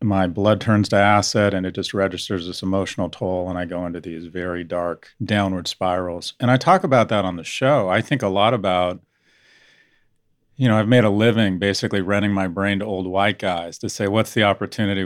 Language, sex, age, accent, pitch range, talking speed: English, male, 40-59, American, 95-115 Hz, 210 wpm